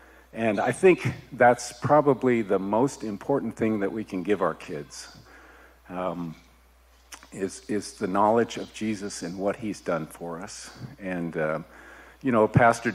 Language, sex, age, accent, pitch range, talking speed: English, male, 50-69, American, 90-115 Hz, 155 wpm